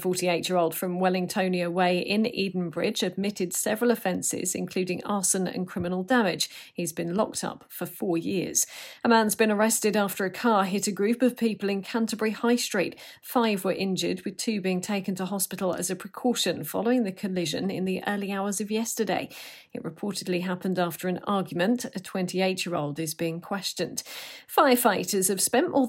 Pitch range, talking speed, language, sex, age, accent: 180-225 Hz, 170 wpm, English, female, 40-59, British